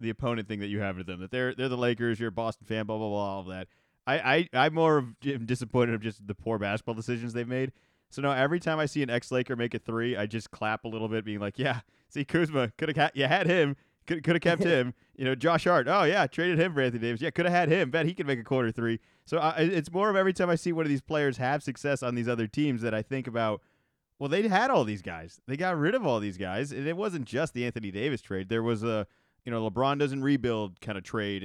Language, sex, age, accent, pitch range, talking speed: English, male, 30-49, American, 115-150 Hz, 275 wpm